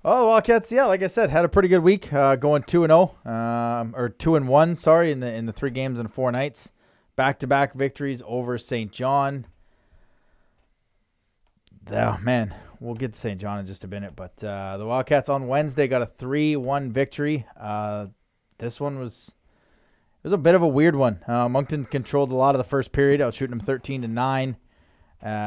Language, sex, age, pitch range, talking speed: English, male, 20-39, 115-140 Hz, 205 wpm